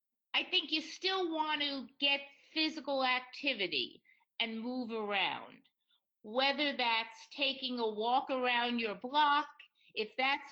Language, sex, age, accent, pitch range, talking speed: English, female, 50-69, American, 235-305 Hz, 125 wpm